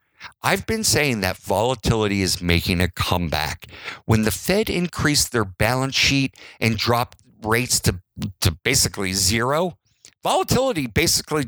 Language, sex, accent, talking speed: English, male, American, 130 wpm